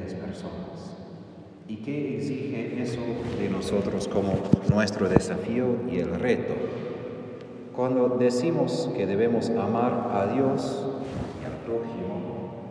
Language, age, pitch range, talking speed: Spanish, 40-59, 120-145 Hz, 95 wpm